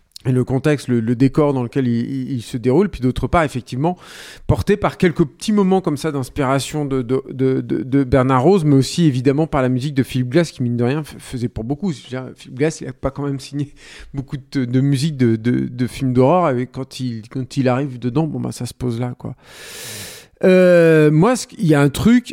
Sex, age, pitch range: male, 40-59, 130-160 Hz